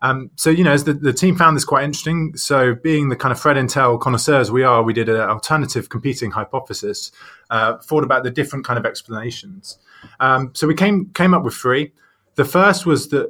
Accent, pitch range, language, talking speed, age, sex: British, 115-150 Hz, English, 215 wpm, 20-39, male